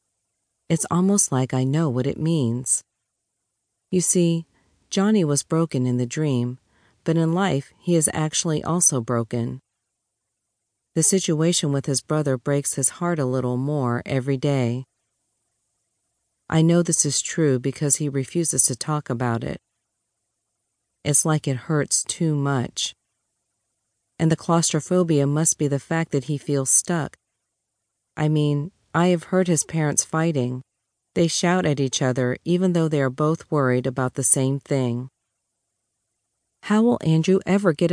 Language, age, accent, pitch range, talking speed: English, 40-59, American, 120-165 Hz, 150 wpm